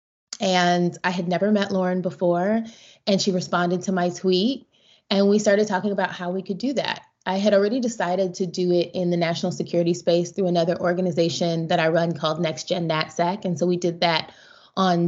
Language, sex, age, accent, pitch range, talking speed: English, female, 20-39, American, 175-200 Hz, 205 wpm